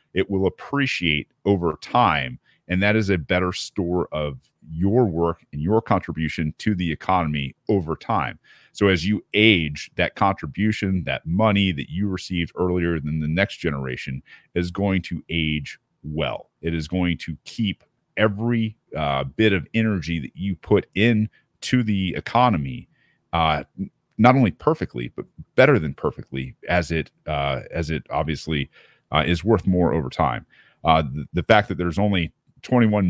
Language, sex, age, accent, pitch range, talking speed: English, male, 40-59, American, 80-110 Hz, 155 wpm